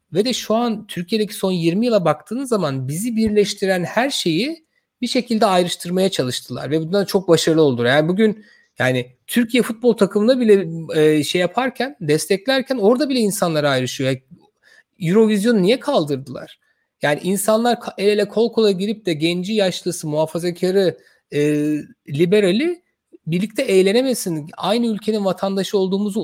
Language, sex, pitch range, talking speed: Turkish, male, 165-225 Hz, 135 wpm